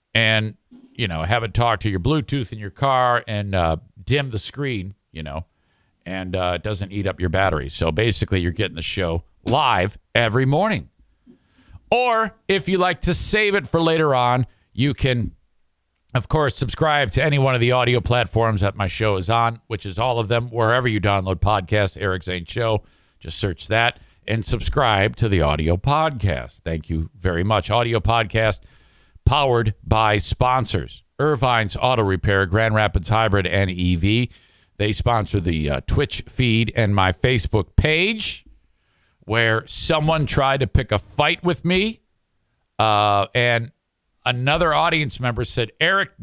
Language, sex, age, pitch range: English, male, 50-69, 95-135 Hz